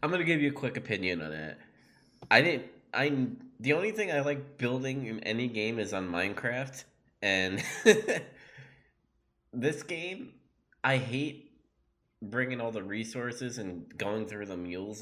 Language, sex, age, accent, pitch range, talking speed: English, male, 20-39, American, 90-115 Hz, 150 wpm